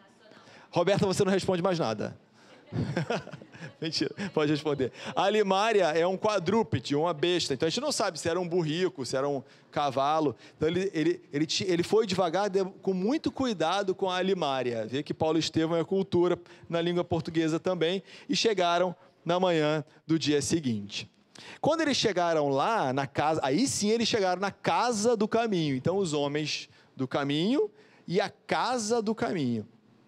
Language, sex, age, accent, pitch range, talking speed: Portuguese, male, 30-49, Brazilian, 145-185 Hz, 160 wpm